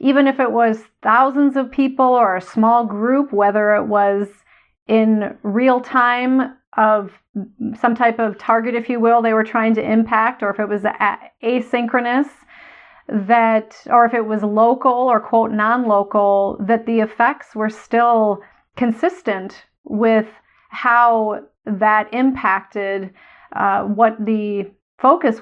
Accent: American